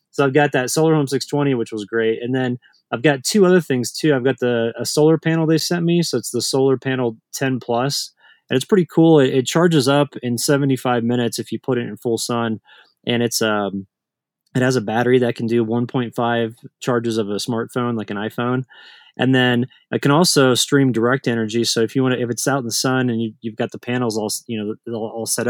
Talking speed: 235 wpm